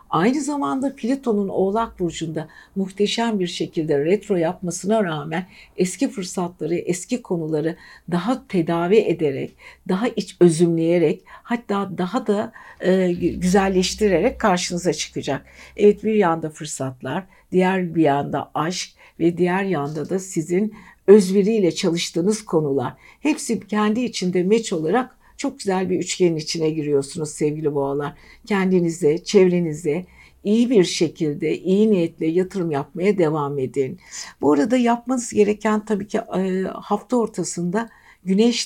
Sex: female